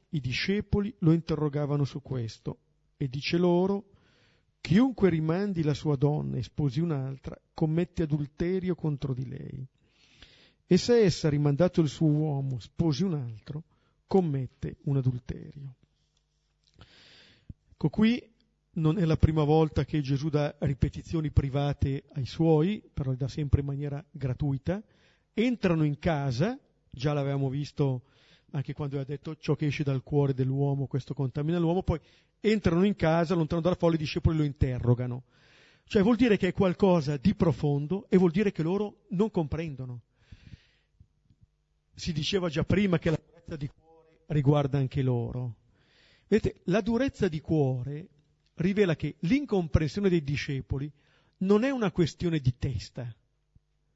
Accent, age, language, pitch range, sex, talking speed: native, 50-69, Italian, 135-175 Hz, male, 145 wpm